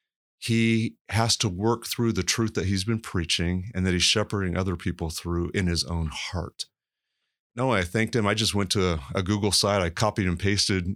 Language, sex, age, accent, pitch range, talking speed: English, male, 30-49, American, 85-105 Hz, 210 wpm